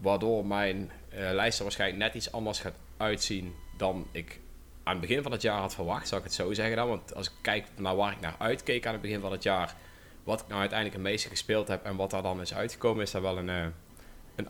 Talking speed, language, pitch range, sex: 255 wpm, Dutch, 90-110 Hz, male